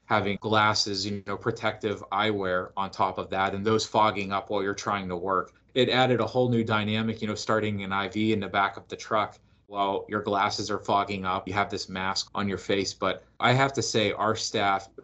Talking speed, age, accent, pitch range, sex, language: 225 wpm, 20-39, American, 95-110 Hz, male, English